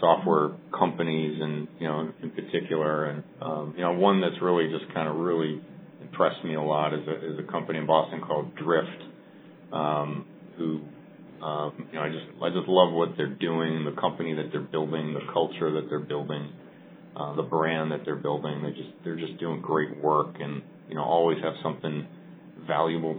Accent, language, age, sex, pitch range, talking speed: American, English, 40-59, male, 75-85 Hz, 190 wpm